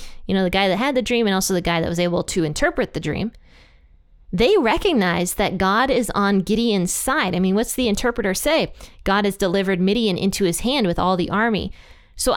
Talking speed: 220 wpm